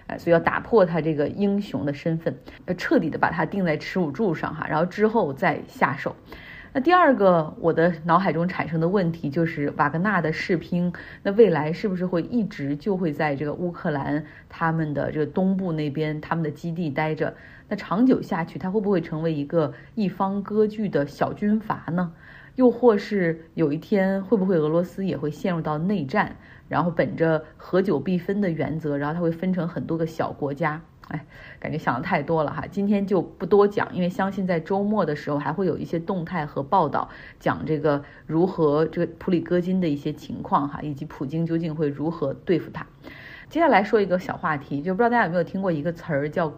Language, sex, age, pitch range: Chinese, female, 30-49, 155-195 Hz